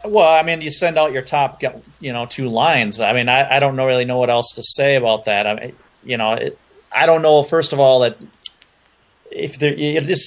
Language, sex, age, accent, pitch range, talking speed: English, male, 30-49, American, 115-140 Hz, 240 wpm